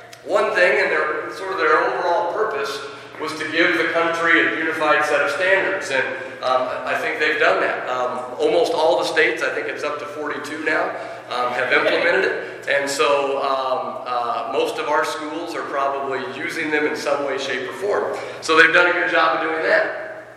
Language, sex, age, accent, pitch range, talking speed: English, male, 40-59, American, 145-195 Hz, 200 wpm